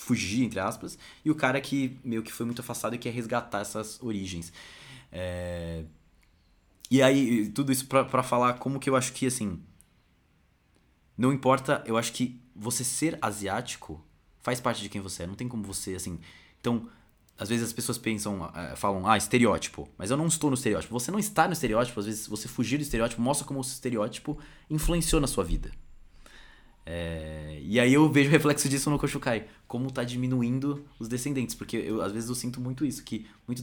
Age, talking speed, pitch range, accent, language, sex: 20-39, 195 wpm, 95-125 Hz, Brazilian, Portuguese, male